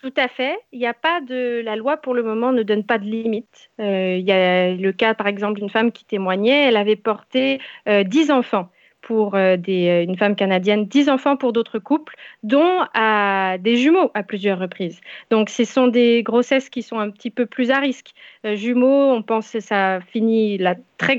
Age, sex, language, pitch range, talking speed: 30-49, female, French, 215-275 Hz, 215 wpm